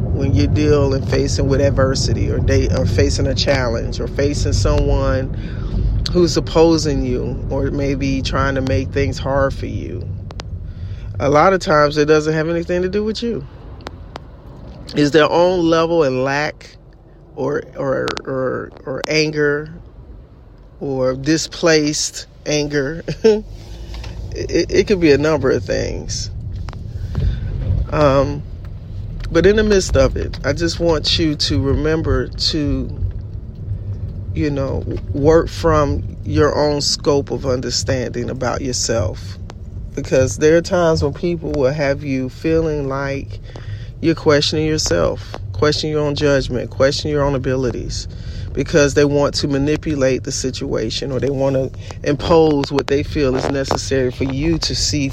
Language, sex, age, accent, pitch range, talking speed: English, male, 40-59, American, 105-150 Hz, 140 wpm